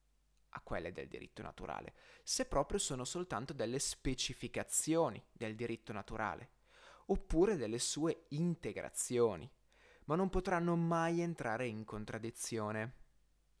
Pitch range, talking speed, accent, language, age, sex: 115-160 Hz, 110 wpm, native, Italian, 20-39, male